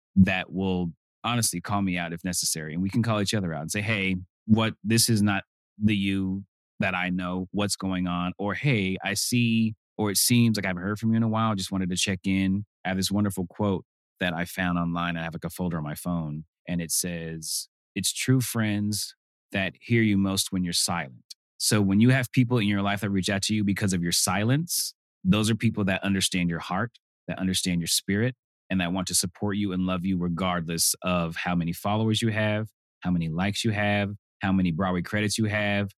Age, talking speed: 30-49, 225 wpm